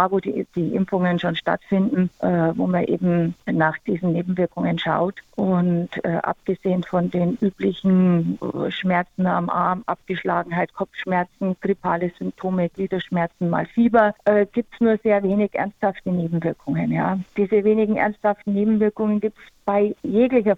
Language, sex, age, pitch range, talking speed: German, female, 50-69, 175-205 Hz, 135 wpm